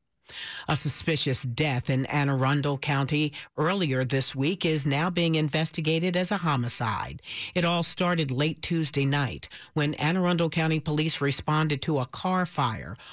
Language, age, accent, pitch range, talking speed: English, 50-69, American, 140-170 Hz, 150 wpm